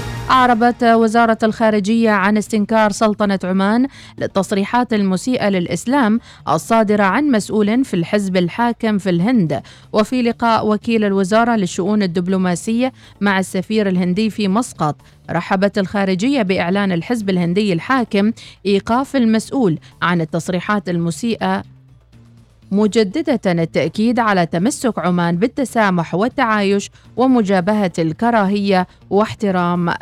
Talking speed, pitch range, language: 100 wpm, 185-235 Hz, Arabic